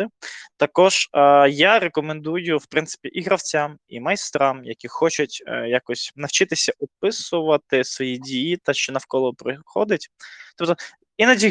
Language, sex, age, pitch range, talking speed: Ukrainian, male, 20-39, 130-165 Hz, 125 wpm